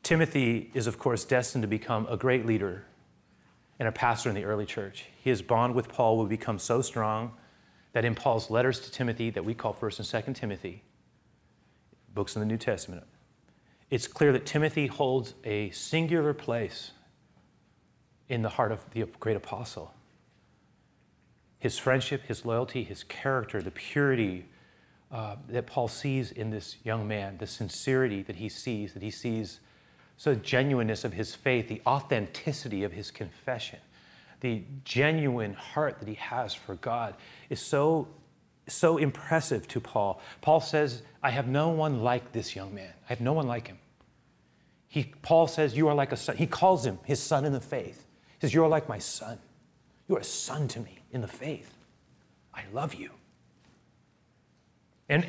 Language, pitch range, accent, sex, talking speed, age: English, 110-150 Hz, American, male, 175 wpm, 30-49